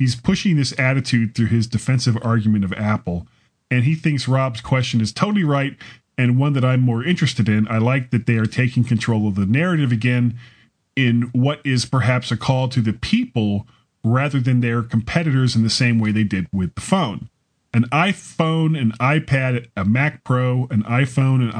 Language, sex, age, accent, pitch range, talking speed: English, male, 40-59, American, 110-145 Hz, 190 wpm